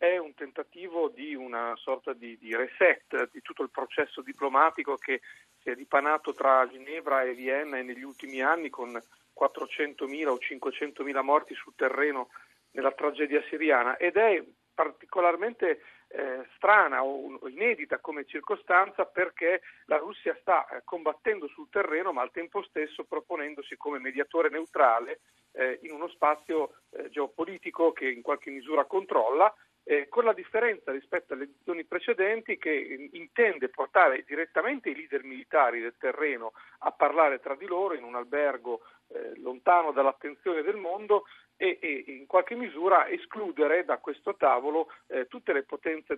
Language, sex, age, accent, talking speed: Italian, male, 40-59, native, 150 wpm